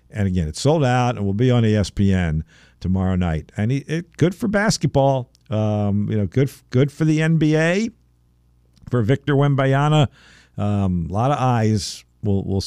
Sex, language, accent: male, English, American